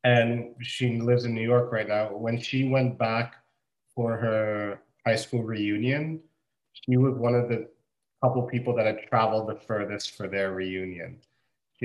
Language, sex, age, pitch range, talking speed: English, male, 30-49, 110-130 Hz, 165 wpm